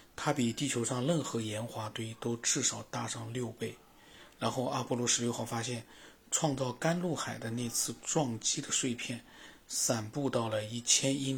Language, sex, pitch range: Chinese, male, 120-160 Hz